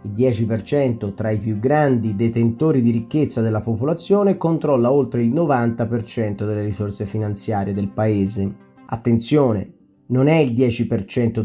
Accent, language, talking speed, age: native, Italian, 130 wpm, 30-49